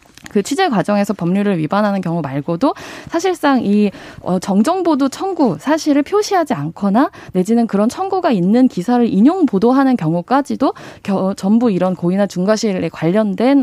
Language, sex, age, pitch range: Korean, female, 20-39, 185-270 Hz